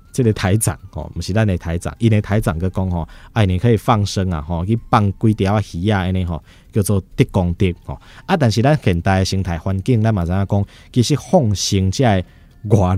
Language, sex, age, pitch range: Chinese, male, 20-39, 85-110 Hz